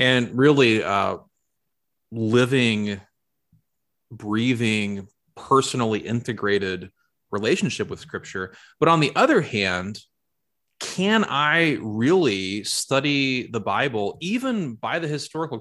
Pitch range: 100-140 Hz